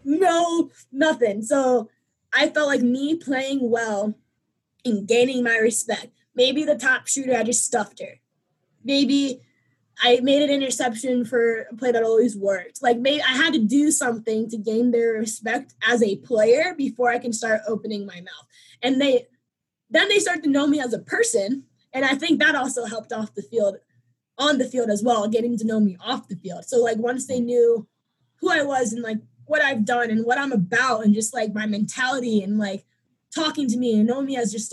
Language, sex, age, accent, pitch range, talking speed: English, female, 20-39, American, 220-270 Hz, 200 wpm